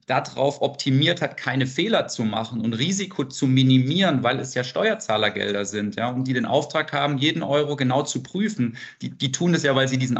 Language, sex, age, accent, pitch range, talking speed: German, male, 40-59, German, 120-140 Hz, 205 wpm